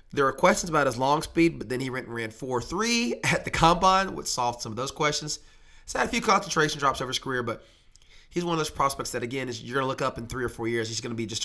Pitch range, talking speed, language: 115-155 Hz, 295 wpm, English